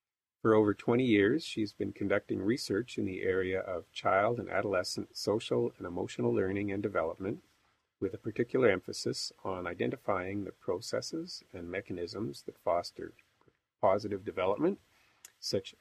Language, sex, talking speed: English, male, 135 wpm